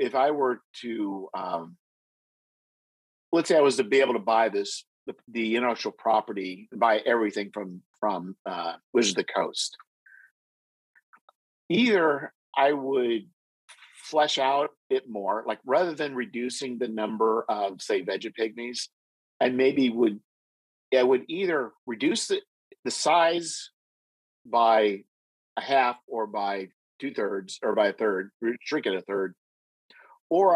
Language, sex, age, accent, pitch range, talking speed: English, male, 50-69, American, 100-125 Hz, 140 wpm